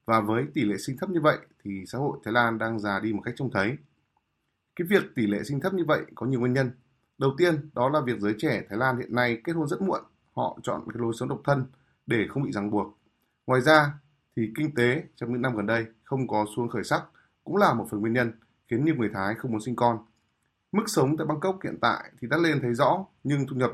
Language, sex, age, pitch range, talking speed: Vietnamese, male, 20-39, 110-145 Hz, 260 wpm